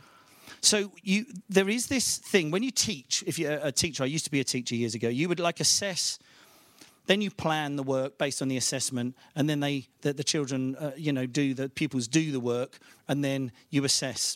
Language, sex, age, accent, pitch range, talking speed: English, male, 40-59, British, 125-175 Hz, 215 wpm